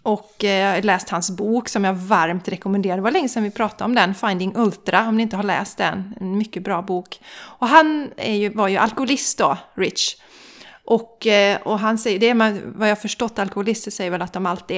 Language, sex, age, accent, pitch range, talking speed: Swedish, female, 30-49, native, 195-255 Hz, 215 wpm